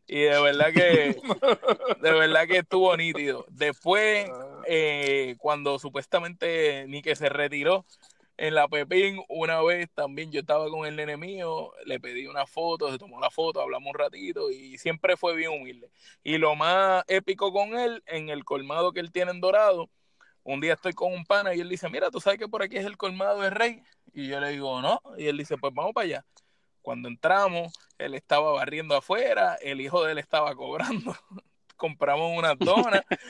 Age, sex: 20-39, male